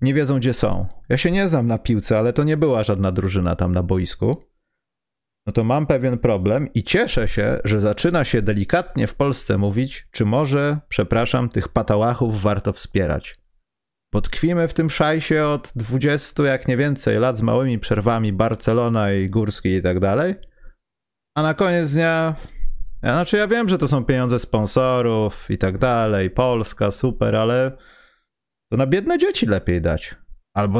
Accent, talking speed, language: native, 170 wpm, Polish